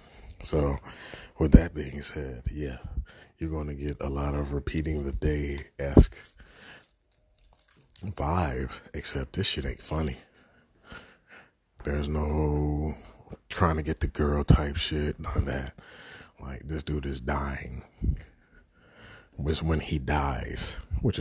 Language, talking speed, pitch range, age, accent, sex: English, 125 wpm, 70-80 Hz, 40-59, American, male